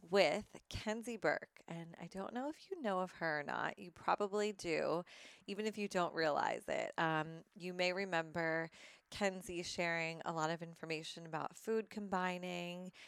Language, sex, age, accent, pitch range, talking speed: English, female, 30-49, American, 165-205 Hz, 165 wpm